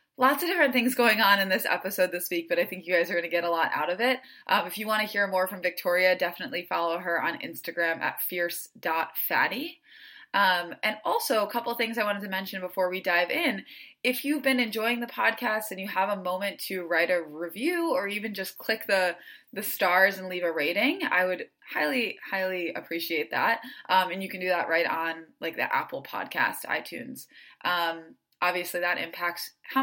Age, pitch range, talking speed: 20-39, 175-235 Hz, 215 wpm